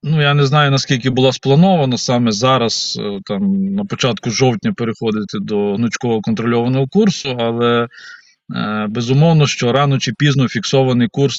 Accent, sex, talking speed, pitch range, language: native, male, 135 wpm, 115-150 Hz, Ukrainian